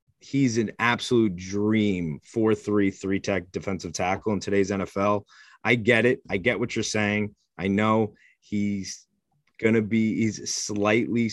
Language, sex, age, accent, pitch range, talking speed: English, male, 30-49, American, 95-110 Hz, 155 wpm